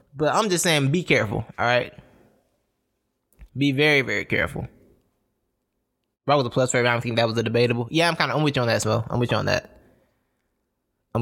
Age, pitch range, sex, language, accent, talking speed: 20-39, 115-150 Hz, male, English, American, 220 wpm